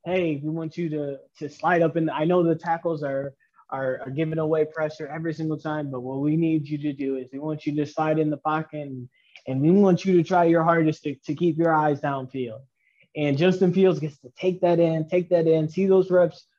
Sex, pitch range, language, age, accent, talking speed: male, 150-180 Hz, English, 20-39, American, 240 wpm